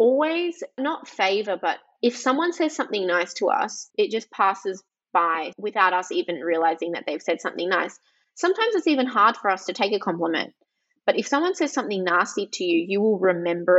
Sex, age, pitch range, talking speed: female, 20-39, 185-245 Hz, 195 wpm